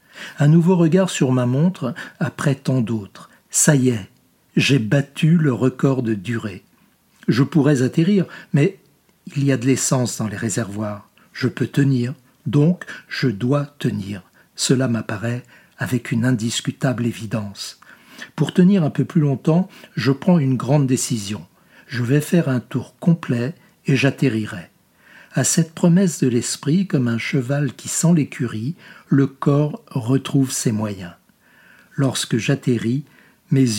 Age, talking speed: 60-79, 145 wpm